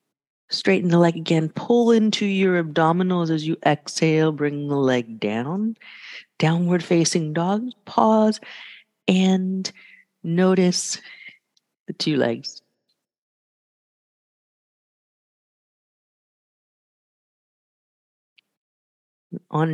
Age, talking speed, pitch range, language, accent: 40-59, 75 wpm, 165-210 Hz, English, American